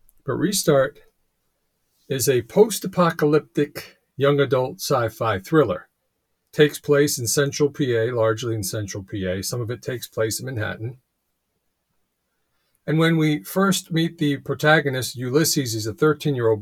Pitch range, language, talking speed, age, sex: 110-145 Hz, English, 130 wpm, 40-59, male